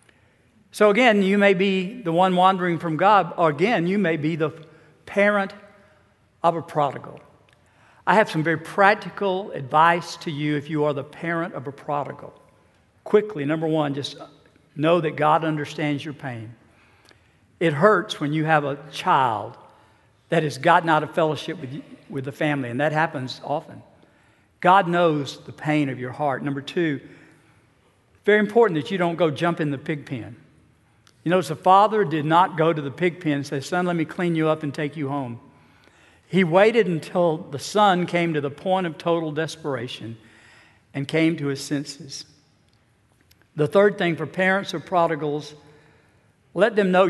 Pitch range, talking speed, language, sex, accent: 140-175 Hz, 175 wpm, English, male, American